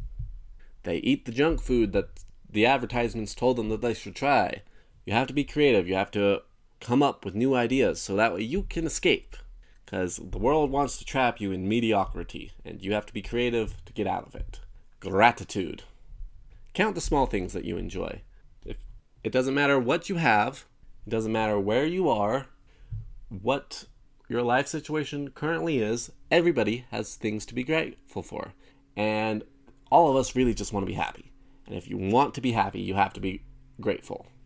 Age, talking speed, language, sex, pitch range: 30-49, 190 wpm, English, male, 105-130 Hz